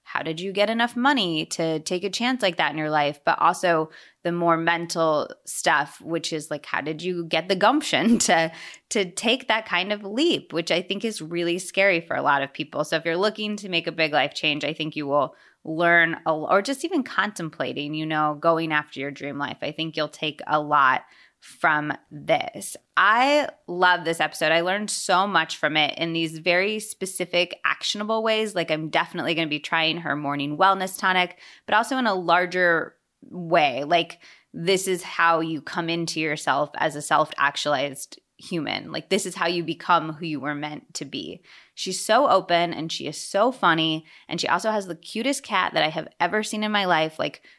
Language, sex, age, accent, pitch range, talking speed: English, female, 20-39, American, 155-195 Hz, 205 wpm